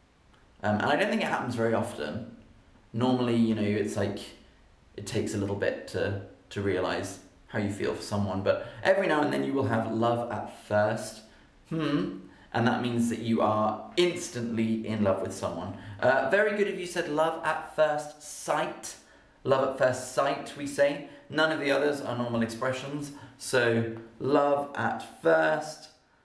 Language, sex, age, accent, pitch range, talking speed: English, male, 30-49, British, 110-130 Hz, 175 wpm